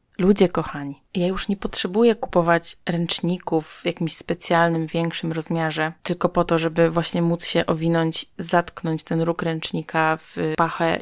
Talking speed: 145 wpm